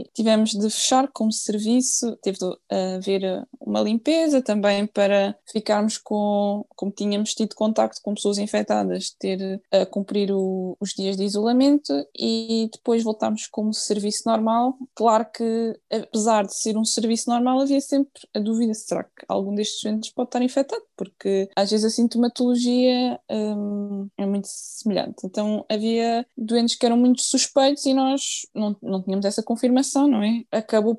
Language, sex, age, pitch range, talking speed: Portuguese, female, 20-39, 195-225 Hz, 155 wpm